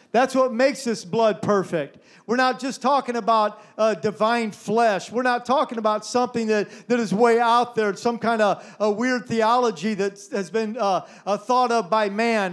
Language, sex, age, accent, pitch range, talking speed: English, male, 40-59, American, 210-245 Hz, 190 wpm